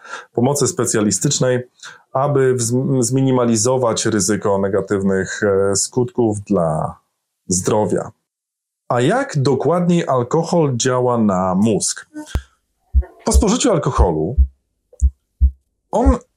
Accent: native